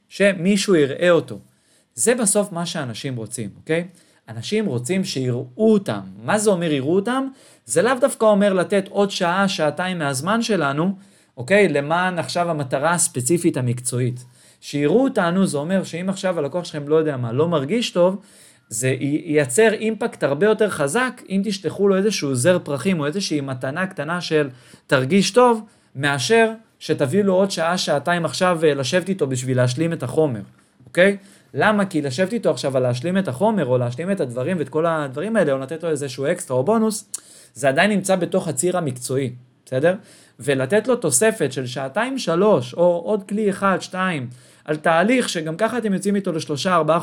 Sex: male